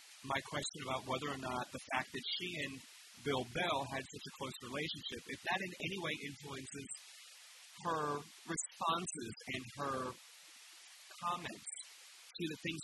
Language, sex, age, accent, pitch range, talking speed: English, male, 40-59, American, 135-170 Hz, 150 wpm